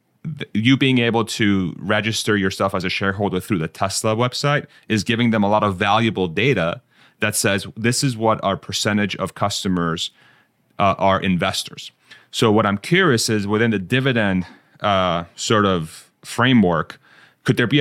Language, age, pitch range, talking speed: English, 30-49, 95-120 Hz, 160 wpm